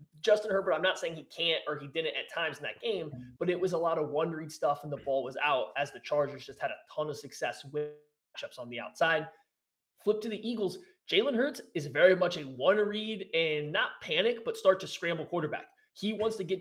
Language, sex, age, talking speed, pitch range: English, male, 20-39, 235 wpm, 150-190 Hz